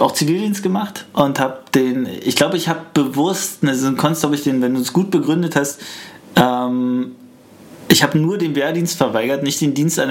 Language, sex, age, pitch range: German, male, 20-39, 125-160 Hz